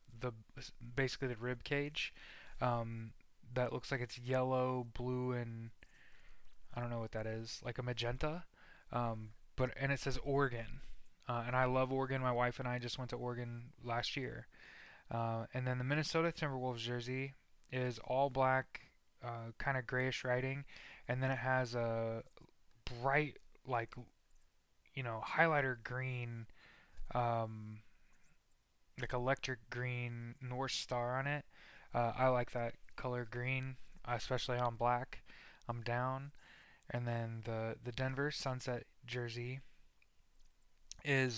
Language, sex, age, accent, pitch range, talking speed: English, male, 20-39, American, 120-130 Hz, 140 wpm